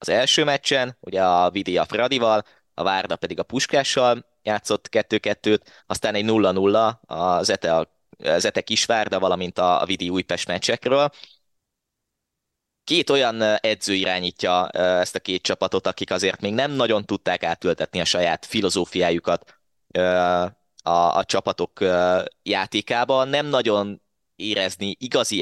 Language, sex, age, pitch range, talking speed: Hungarian, male, 20-39, 90-110 Hz, 125 wpm